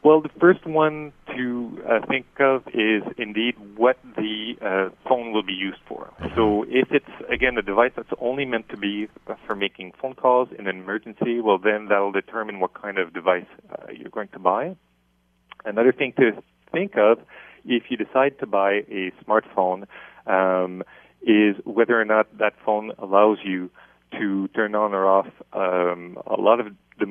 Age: 40-59